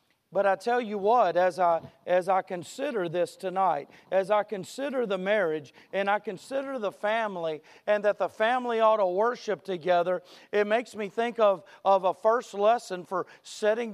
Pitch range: 180-210 Hz